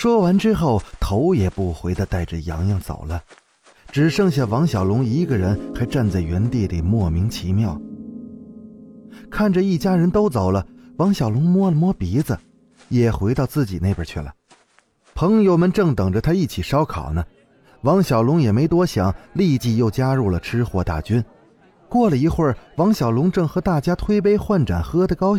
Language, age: Chinese, 30-49